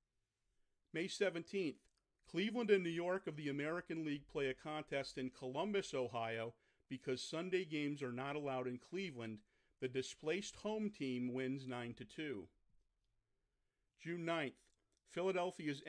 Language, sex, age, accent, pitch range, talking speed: English, male, 50-69, American, 125-170 Hz, 125 wpm